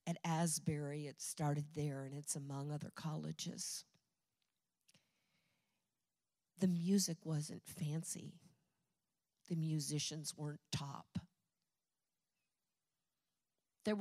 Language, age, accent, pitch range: English, 50-69, American, 150-185 Hz